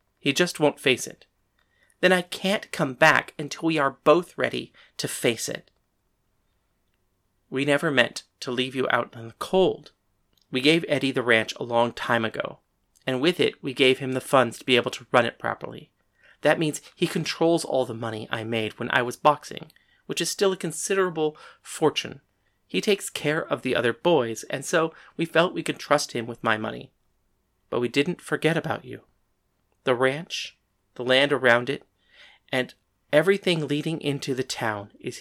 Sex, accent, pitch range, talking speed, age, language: male, American, 110-155 Hz, 185 wpm, 30-49, English